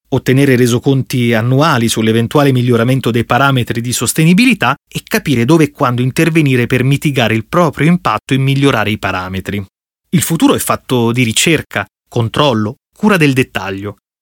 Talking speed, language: 145 wpm, Italian